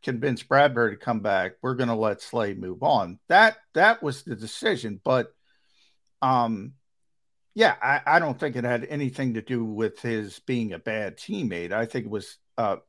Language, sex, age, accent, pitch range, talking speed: English, male, 50-69, American, 110-135 Hz, 180 wpm